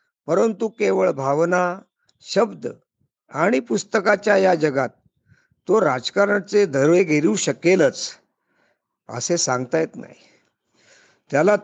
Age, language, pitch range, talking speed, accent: 50-69, Marathi, 145-190 Hz, 90 wpm, native